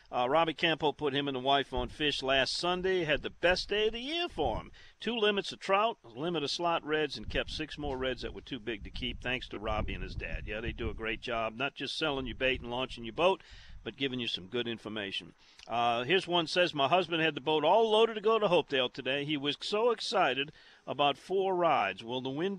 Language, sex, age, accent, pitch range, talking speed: English, male, 50-69, American, 125-170 Hz, 250 wpm